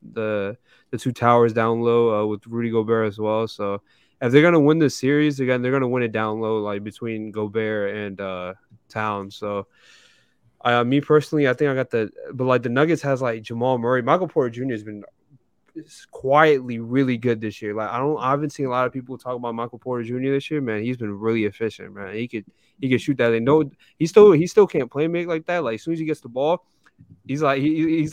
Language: English